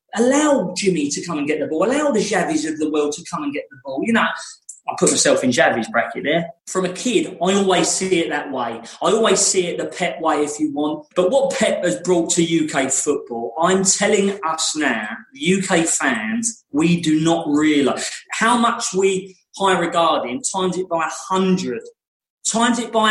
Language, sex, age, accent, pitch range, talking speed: English, male, 30-49, British, 170-235 Hz, 210 wpm